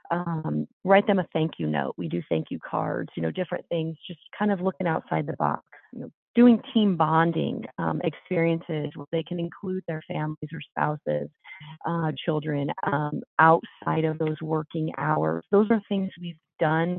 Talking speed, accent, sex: 175 wpm, American, female